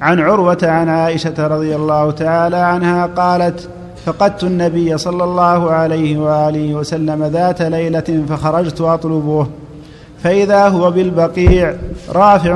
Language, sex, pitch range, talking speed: Arabic, male, 155-175 Hz, 115 wpm